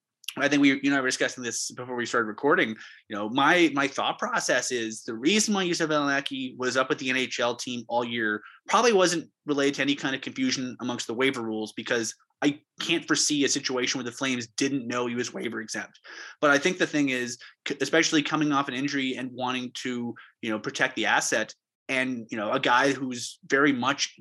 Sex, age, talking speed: male, 20-39, 215 wpm